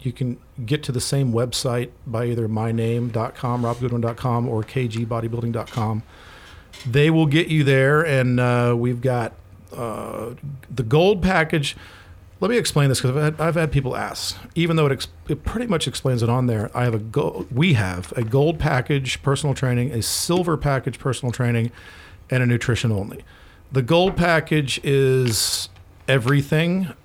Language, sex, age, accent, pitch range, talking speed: English, male, 40-59, American, 115-145 Hz, 160 wpm